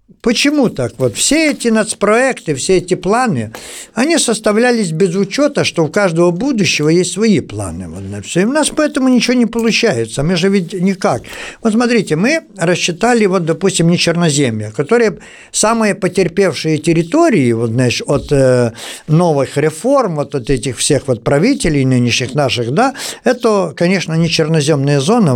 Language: Russian